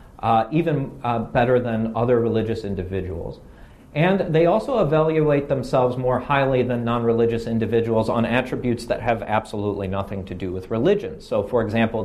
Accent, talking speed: American, 155 wpm